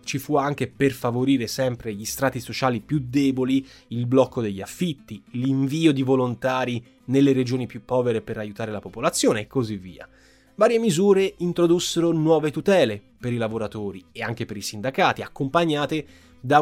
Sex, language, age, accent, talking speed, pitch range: male, Italian, 20-39, native, 160 wpm, 110-150 Hz